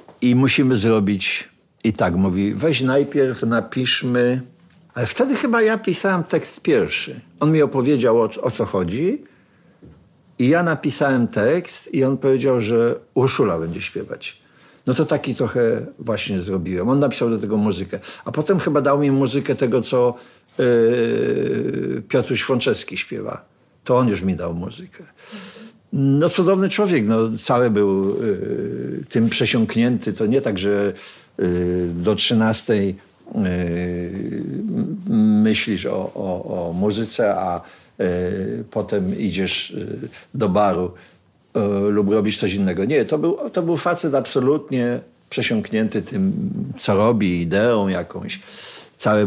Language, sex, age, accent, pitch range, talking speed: Polish, male, 50-69, native, 100-150 Hz, 125 wpm